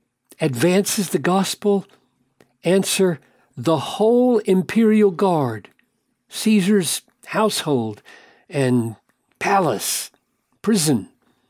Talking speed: 70 wpm